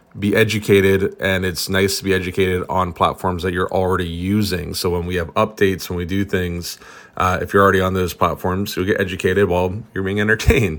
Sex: male